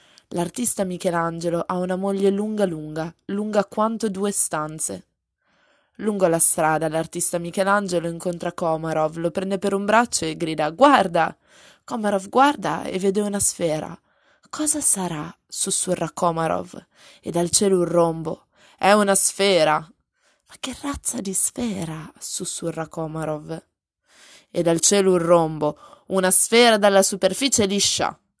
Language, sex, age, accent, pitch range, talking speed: Italian, female, 20-39, native, 170-210 Hz, 130 wpm